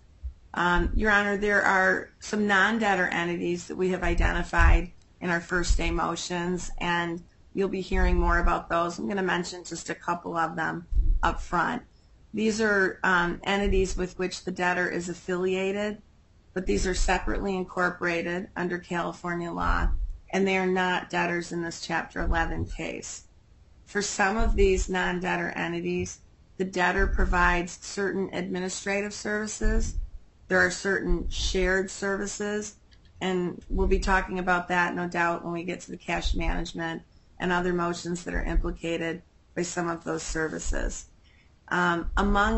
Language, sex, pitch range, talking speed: English, female, 170-190 Hz, 150 wpm